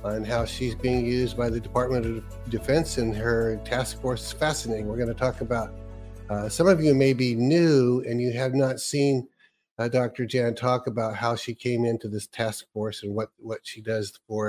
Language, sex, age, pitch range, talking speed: English, male, 50-69, 110-130 Hz, 210 wpm